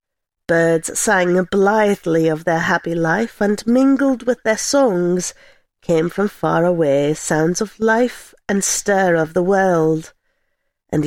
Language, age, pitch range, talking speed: English, 40-59, 170-220 Hz, 135 wpm